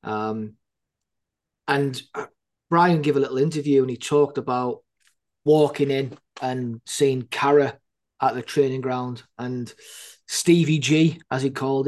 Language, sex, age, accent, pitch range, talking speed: English, male, 20-39, British, 115-140 Hz, 130 wpm